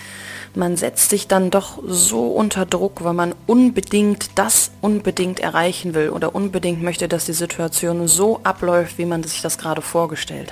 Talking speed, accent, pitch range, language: 165 wpm, German, 145-180 Hz, German